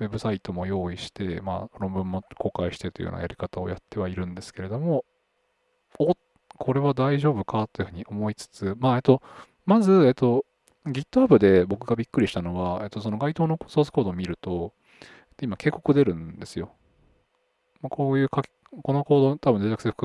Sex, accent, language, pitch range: male, native, Japanese, 95-140 Hz